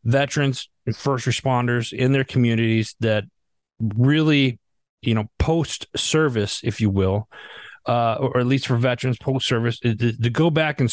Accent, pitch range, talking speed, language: American, 105-130 Hz, 160 wpm, English